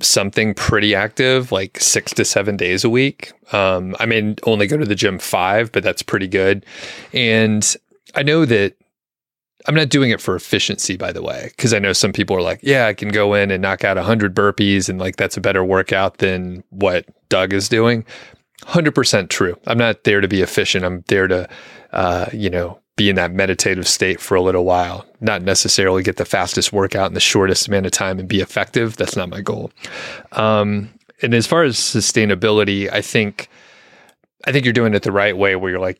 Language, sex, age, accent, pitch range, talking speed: English, male, 30-49, American, 95-110 Hz, 210 wpm